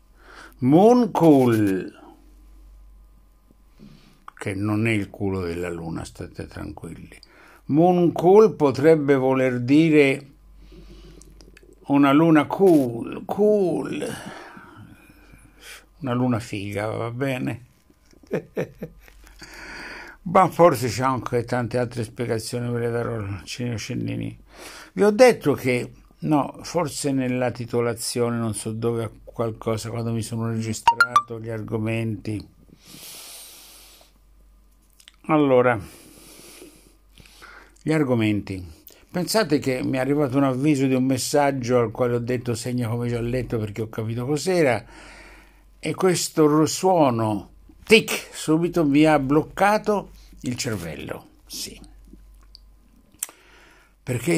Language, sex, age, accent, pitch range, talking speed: Italian, male, 60-79, native, 115-155 Hz, 105 wpm